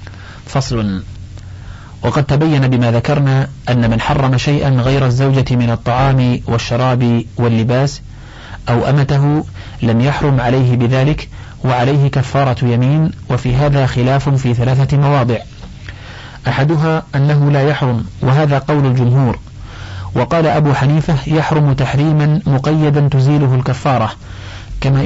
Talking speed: 110 wpm